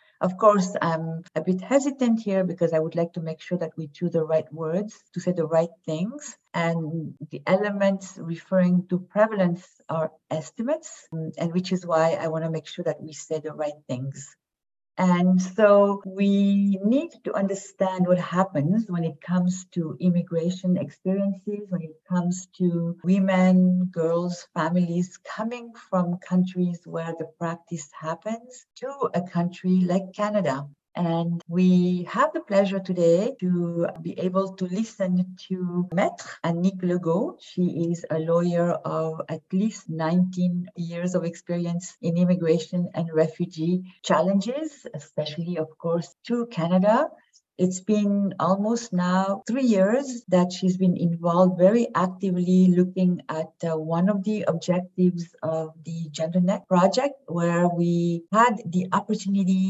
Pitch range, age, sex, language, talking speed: 165-195 Hz, 50-69, female, English, 145 wpm